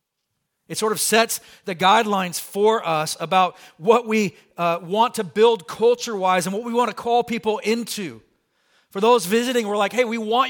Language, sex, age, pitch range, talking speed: English, male, 40-59, 200-250 Hz, 185 wpm